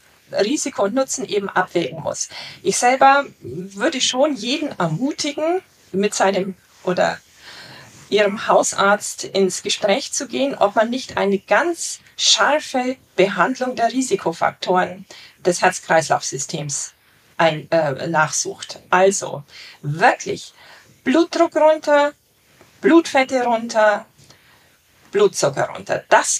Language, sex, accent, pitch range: German, female, German, 185-275 Hz